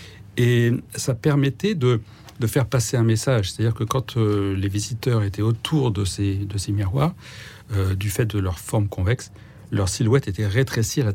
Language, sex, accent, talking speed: French, male, French, 190 wpm